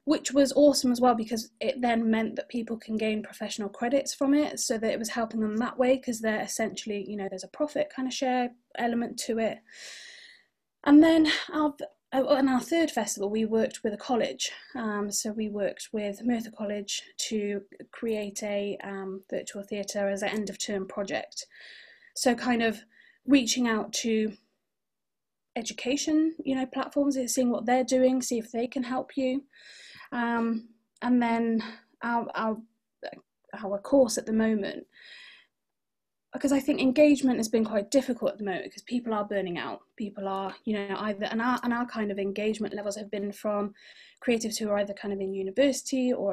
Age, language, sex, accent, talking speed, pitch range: 20-39, English, female, British, 185 wpm, 205-255 Hz